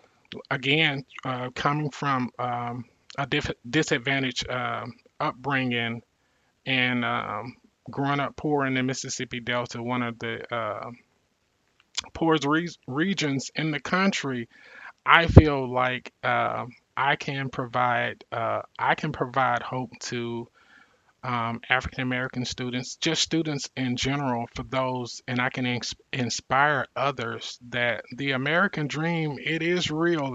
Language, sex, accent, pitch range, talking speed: English, male, American, 125-145 Hz, 130 wpm